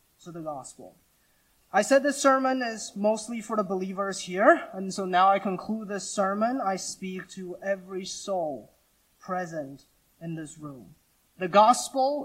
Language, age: English, 20-39